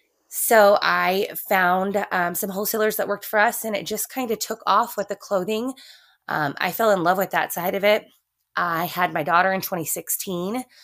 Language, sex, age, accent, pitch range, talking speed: English, female, 20-39, American, 165-200 Hz, 200 wpm